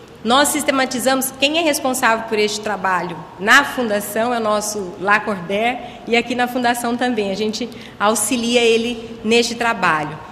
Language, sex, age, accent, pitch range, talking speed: Portuguese, female, 30-49, Brazilian, 205-250 Hz, 145 wpm